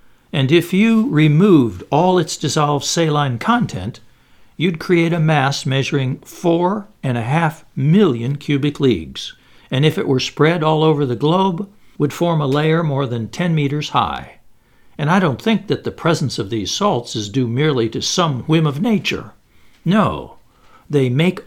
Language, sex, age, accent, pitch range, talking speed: English, male, 60-79, American, 125-170 Hz, 170 wpm